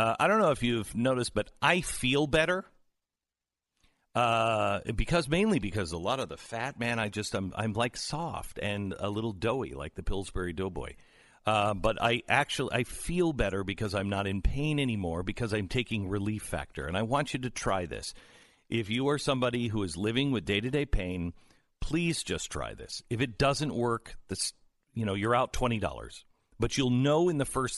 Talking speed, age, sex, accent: 200 wpm, 50-69, male, American